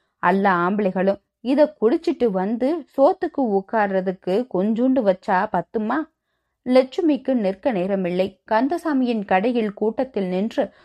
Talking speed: 100 wpm